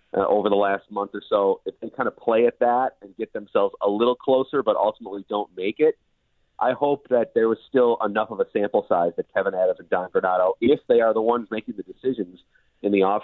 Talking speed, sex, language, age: 235 wpm, male, English, 40-59